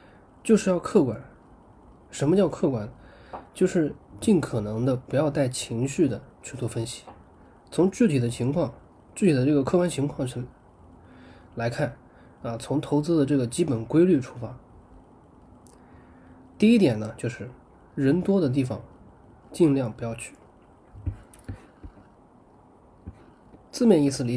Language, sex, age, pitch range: Chinese, male, 20-39, 120-160 Hz